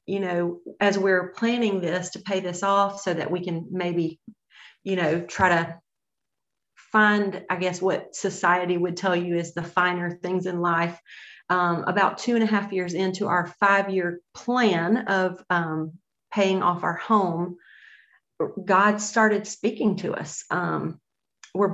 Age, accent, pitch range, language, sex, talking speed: 40-59, American, 180-205 Hz, English, female, 155 wpm